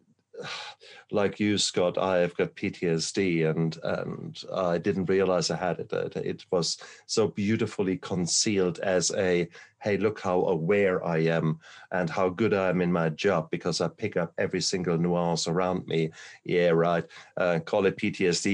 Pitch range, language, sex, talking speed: 85-105 Hz, English, male, 165 wpm